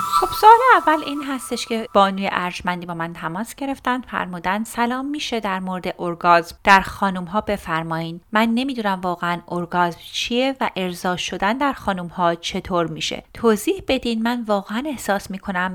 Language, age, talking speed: Persian, 30-49, 155 wpm